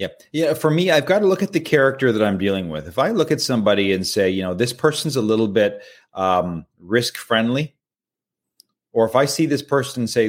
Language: English